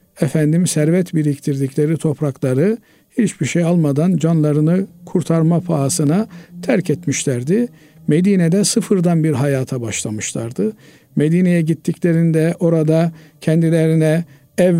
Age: 50-69